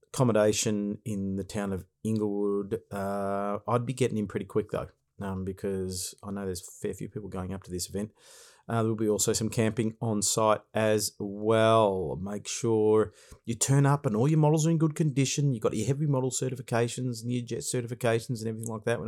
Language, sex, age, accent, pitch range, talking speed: English, male, 40-59, Australian, 105-120 Hz, 205 wpm